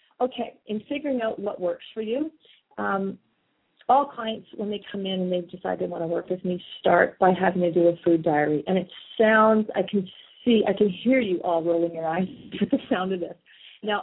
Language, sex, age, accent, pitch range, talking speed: English, female, 30-49, American, 175-220 Hz, 220 wpm